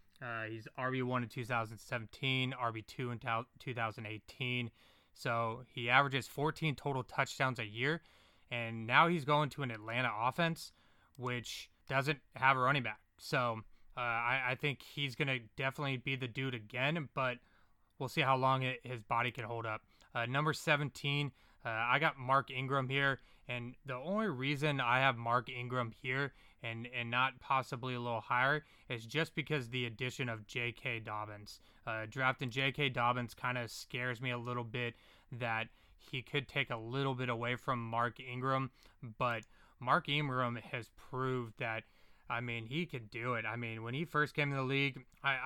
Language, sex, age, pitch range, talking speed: English, male, 20-39, 115-135 Hz, 175 wpm